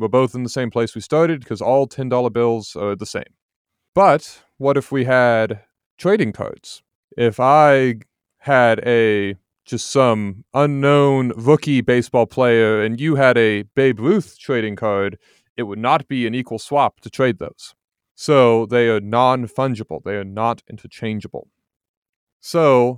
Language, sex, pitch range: English, male, 110-135 Hz